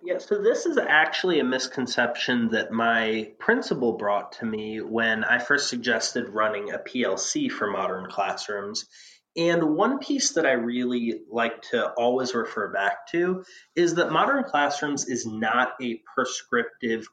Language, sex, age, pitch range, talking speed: English, male, 20-39, 115-170 Hz, 150 wpm